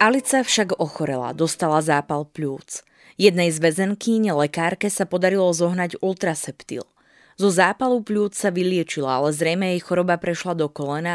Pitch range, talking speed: 155-195 Hz, 140 wpm